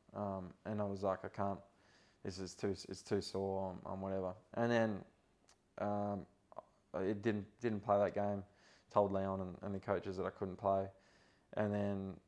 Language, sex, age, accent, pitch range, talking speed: English, male, 20-39, Australian, 95-110 Hz, 175 wpm